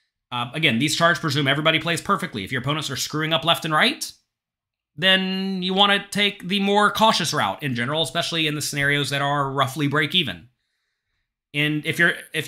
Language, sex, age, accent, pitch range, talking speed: English, male, 30-49, American, 115-175 Hz, 190 wpm